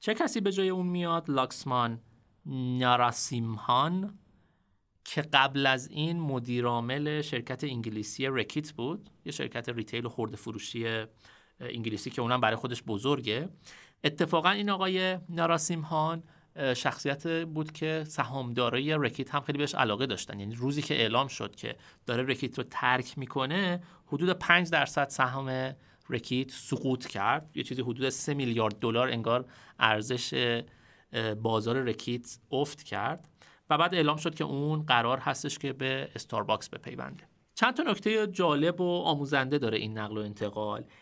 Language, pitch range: Persian, 115-155 Hz